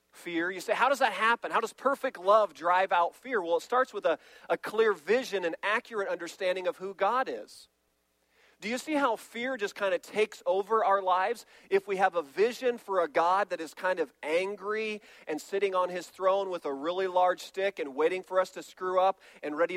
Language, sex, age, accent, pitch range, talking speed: English, male, 40-59, American, 185-245 Hz, 220 wpm